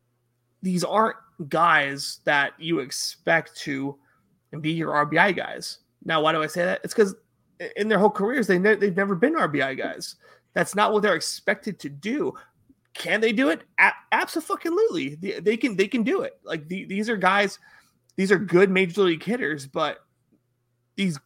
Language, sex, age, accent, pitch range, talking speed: English, male, 30-49, American, 155-200 Hz, 170 wpm